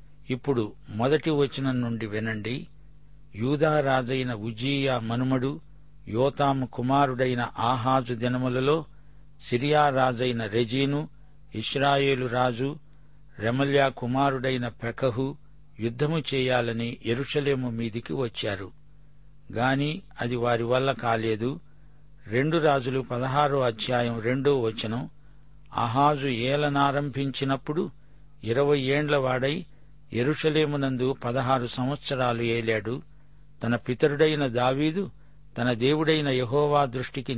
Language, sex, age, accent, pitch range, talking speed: Telugu, male, 60-79, native, 120-145 Hz, 80 wpm